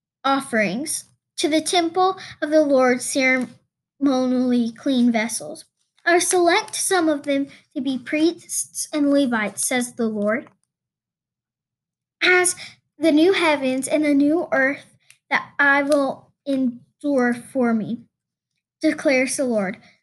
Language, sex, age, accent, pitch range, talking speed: English, female, 10-29, American, 245-300 Hz, 120 wpm